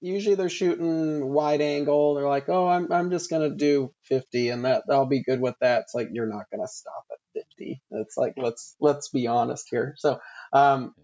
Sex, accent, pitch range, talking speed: male, American, 125-145 Hz, 205 wpm